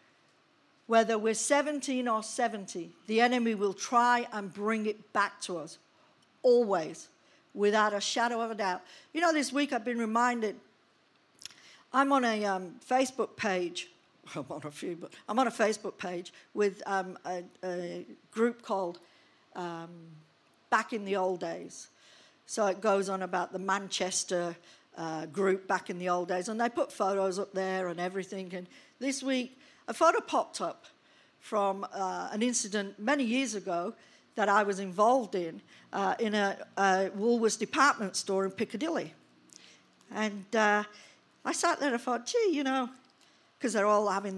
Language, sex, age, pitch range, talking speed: English, female, 50-69, 190-245 Hz, 160 wpm